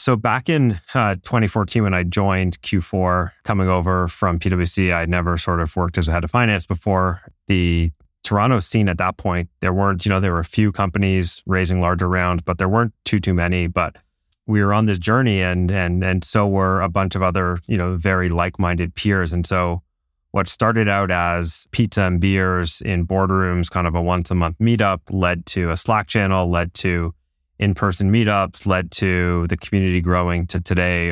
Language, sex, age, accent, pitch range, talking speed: English, male, 30-49, American, 85-100 Hz, 195 wpm